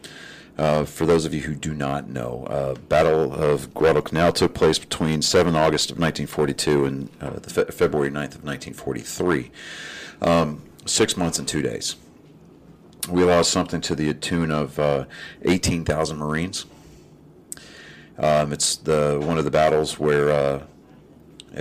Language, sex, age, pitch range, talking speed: English, male, 40-59, 75-85 Hz, 145 wpm